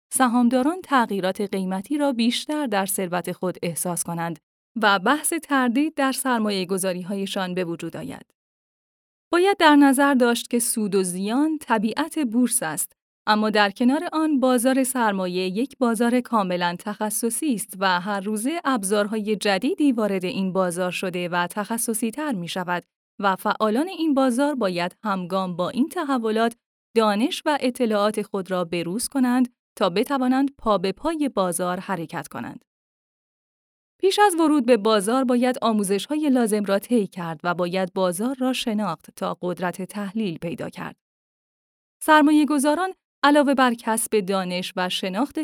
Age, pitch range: 10-29, 190-265 Hz